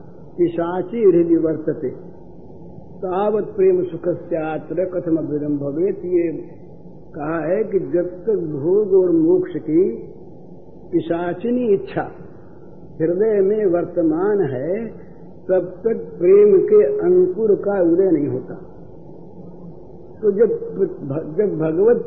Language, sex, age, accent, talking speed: Hindi, male, 50-69, native, 110 wpm